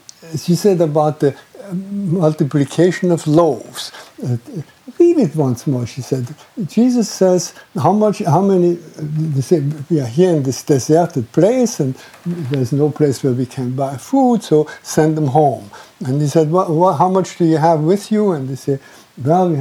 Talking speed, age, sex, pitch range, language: 175 wpm, 60-79, male, 140-180 Hz, English